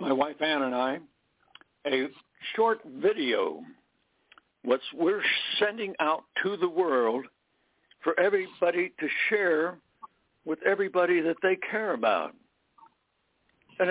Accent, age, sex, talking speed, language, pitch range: American, 60-79, male, 110 wpm, English, 150-210 Hz